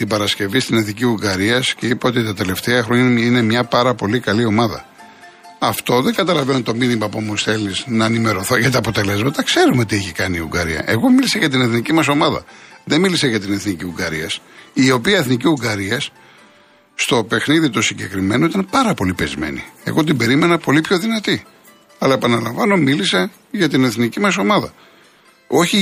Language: Greek